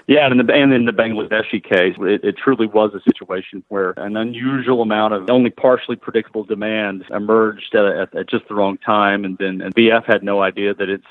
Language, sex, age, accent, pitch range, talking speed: English, male, 40-59, American, 100-115 Hz, 225 wpm